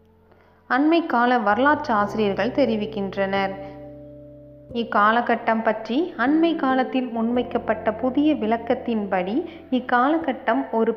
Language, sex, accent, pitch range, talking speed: Tamil, female, native, 205-275 Hz, 75 wpm